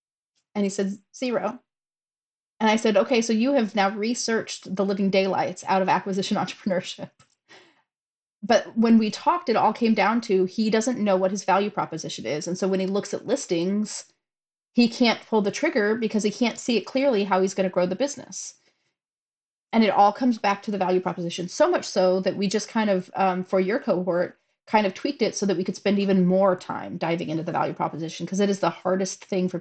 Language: English